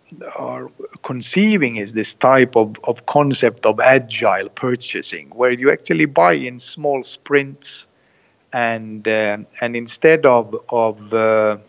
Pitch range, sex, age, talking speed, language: 110-140 Hz, male, 50-69, 125 wpm, English